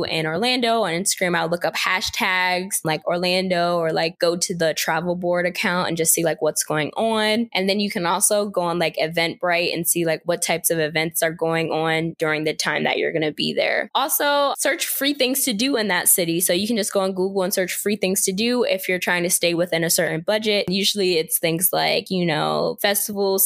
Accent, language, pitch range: American, English, 170-205 Hz